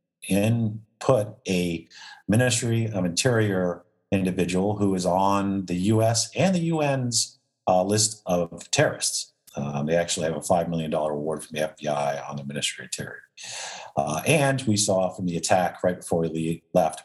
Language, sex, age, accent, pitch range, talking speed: English, male, 50-69, American, 80-110 Hz, 165 wpm